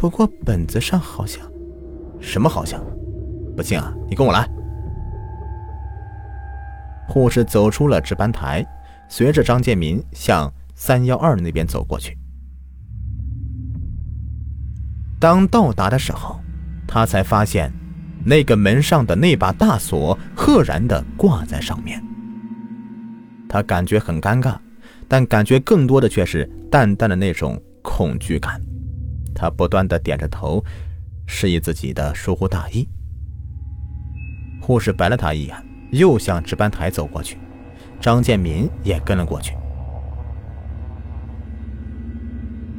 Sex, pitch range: male, 80-115 Hz